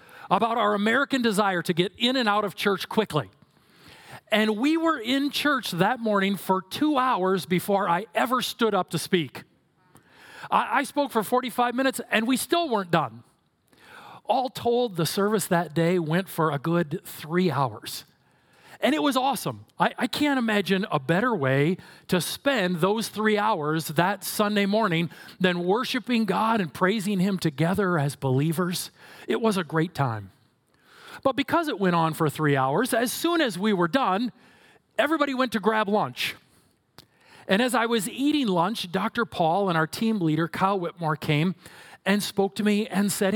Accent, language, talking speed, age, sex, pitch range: American, English, 175 wpm, 40-59, male, 175-240 Hz